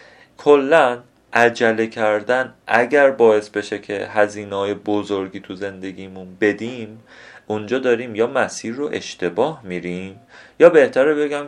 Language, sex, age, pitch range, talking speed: Persian, male, 30-49, 100-135 Hz, 115 wpm